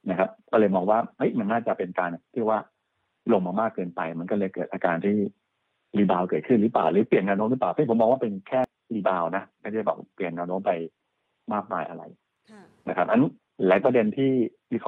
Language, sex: Thai, male